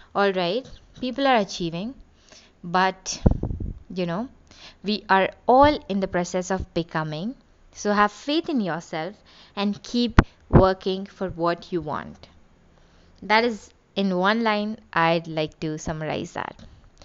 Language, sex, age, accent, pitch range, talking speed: English, female, 20-39, Indian, 185-265 Hz, 130 wpm